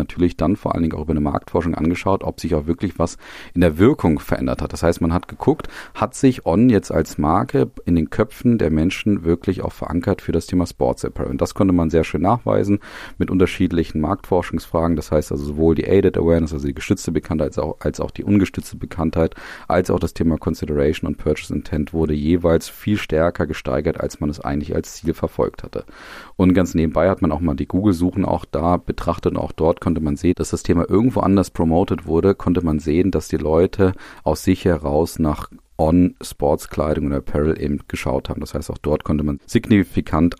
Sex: male